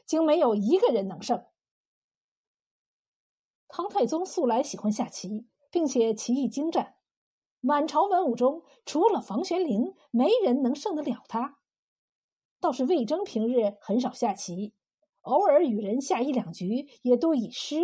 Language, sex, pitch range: Chinese, female, 240-325 Hz